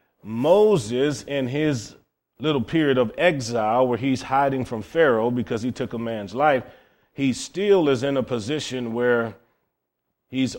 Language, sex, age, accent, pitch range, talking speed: English, male, 40-59, American, 120-140 Hz, 145 wpm